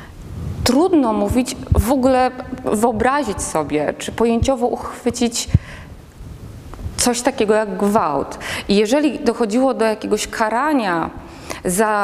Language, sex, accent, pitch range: Polish, female, native, 205-250 Hz